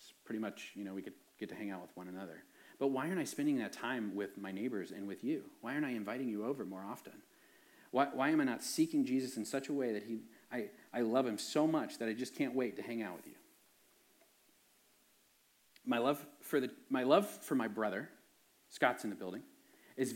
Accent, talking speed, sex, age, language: American, 230 wpm, male, 40-59, English